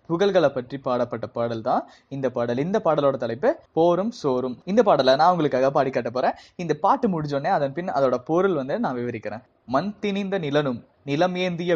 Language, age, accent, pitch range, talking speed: Tamil, 20-39, native, 140-185 Hz, 170 wpm